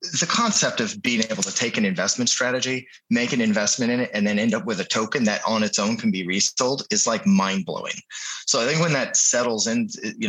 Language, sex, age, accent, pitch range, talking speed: English, male, 30-49, American, 110-185 Hz, 240 wpm